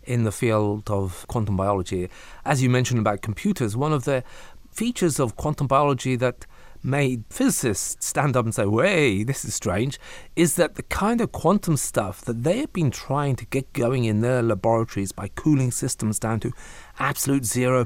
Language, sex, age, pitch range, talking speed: English, male, 30-49, 115-145 Hz, 180 wpm